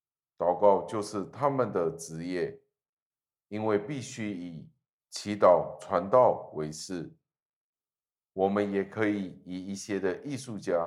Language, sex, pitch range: Chinese, male, 85-105 Hz